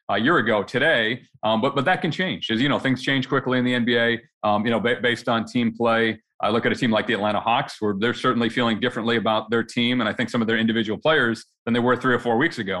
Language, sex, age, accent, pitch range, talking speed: English, male, 40-59, American, 115-140 Hz, 280 wpm